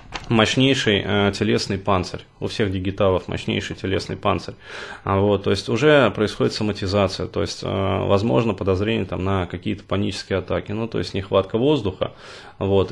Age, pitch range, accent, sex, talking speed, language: 20-39, 95-110 Hz, native, male, 150 wpm, Russian